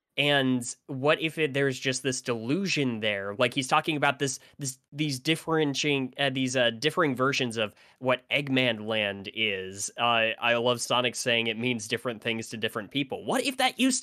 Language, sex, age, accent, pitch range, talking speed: English, male, 10-29, American, 115-140 Hz, 185 wpm